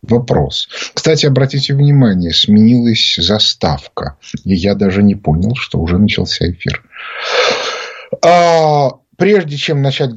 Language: Russian